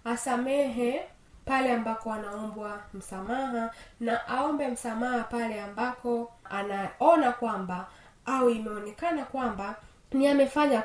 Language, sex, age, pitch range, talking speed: Swahili, female, 20-39, 220-270 Hz, 95 wpm